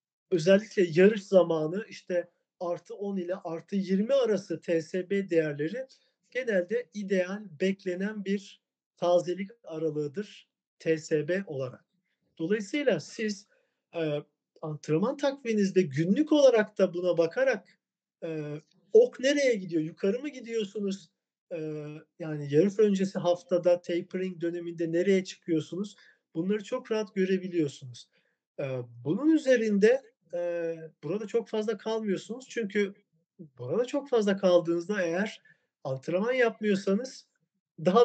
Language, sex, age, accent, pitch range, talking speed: Turkish, male, 50-69, native, 165-205 Hz, 105 wpm